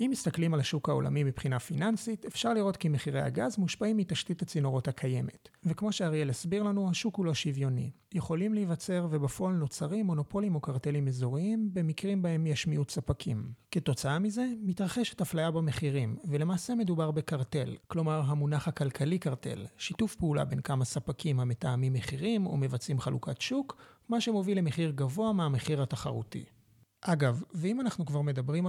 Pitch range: 145-195 Hz